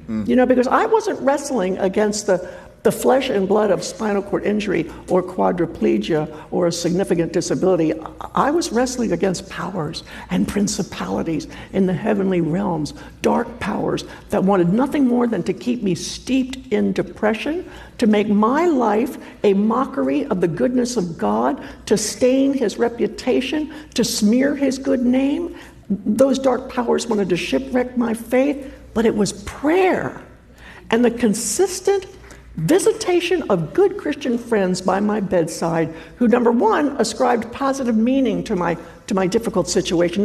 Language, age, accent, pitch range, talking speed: English, 60-79, American, 190-270 Hz, 150 wpm